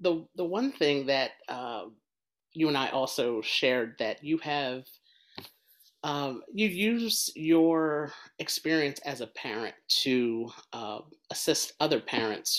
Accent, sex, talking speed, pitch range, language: American, male, 130 wpm, 115-145 Hz, English